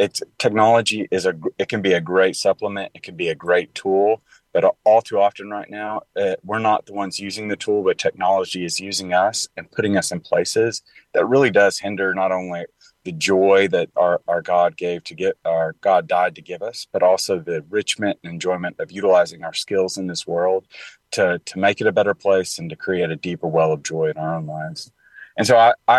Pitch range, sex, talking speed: 90-105 Hz, male, 220 wpm